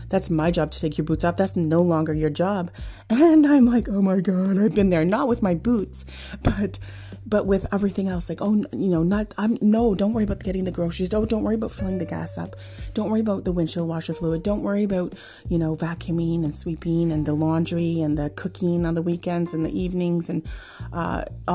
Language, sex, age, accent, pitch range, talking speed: English, female, 30-49, American, 165-190 Hz, 225 wpm